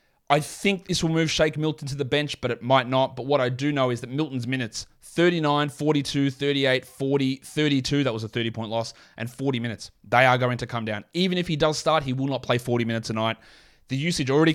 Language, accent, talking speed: English, Australian, 235 wpm